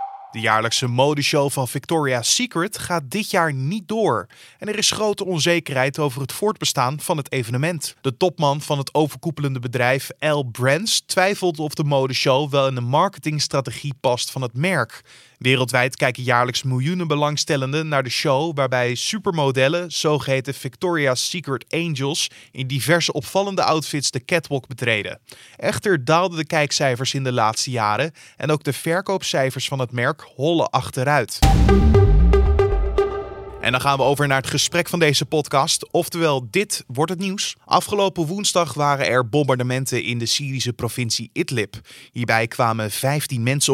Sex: male